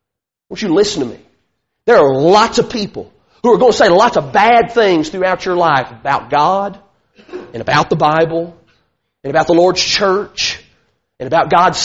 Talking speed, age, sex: 180 wpm, 40-59, male